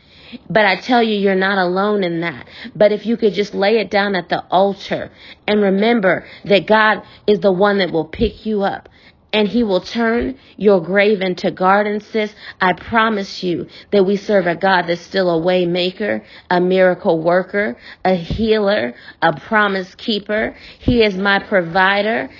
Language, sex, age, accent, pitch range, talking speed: English, female, 40-59, American, 190-225 Hz, 175 wpm